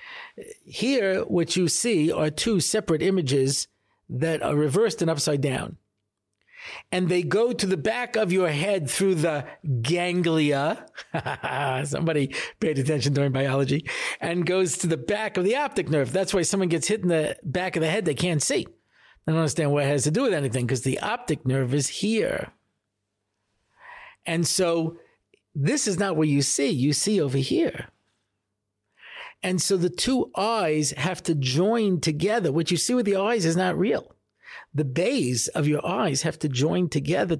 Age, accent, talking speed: 50-69, American, 175 wpm